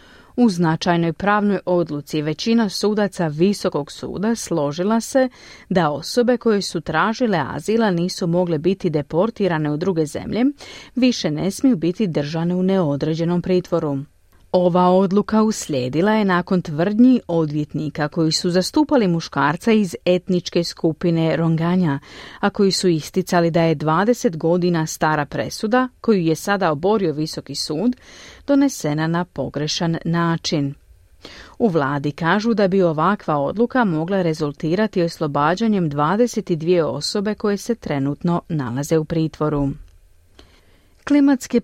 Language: Croatian